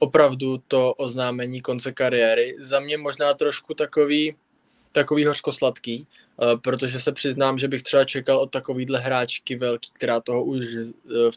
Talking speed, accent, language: 145 wpm, native, Czech